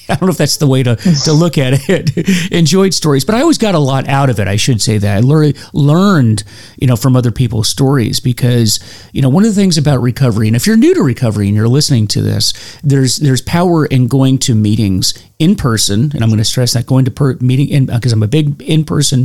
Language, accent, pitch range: English, American, 110-140 Hz